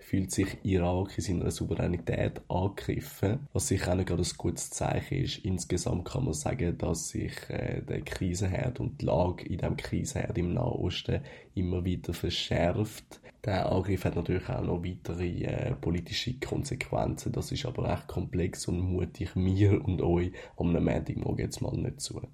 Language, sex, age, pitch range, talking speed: German, male, 20-39, 85-100 Hz, 170 wpm